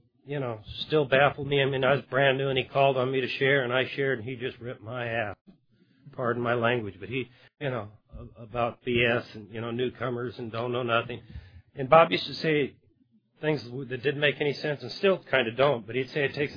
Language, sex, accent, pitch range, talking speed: English, male, American, 115-140 Hz, 235 wpm